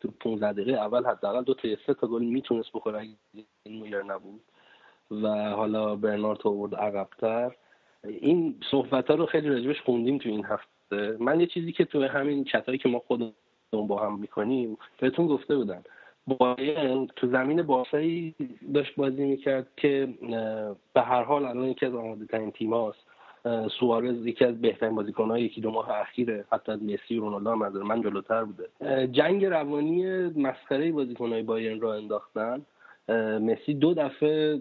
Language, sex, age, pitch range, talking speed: Persian, male, 30-49, 110-140 Hz, 155 wpm